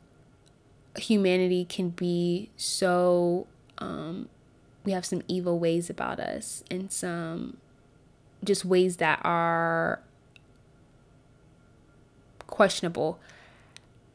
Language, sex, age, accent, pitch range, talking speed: English, female, 20-39, American, 140-190 Hz, 80 wpm